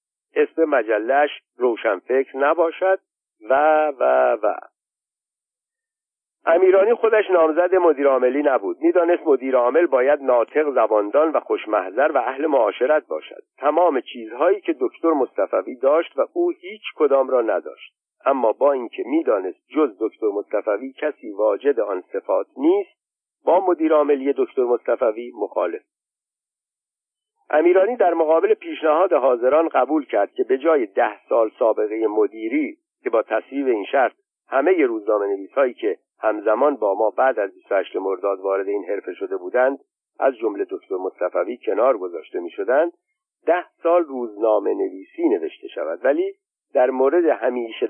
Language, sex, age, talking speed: Persian, male, 50-69, 135 wpm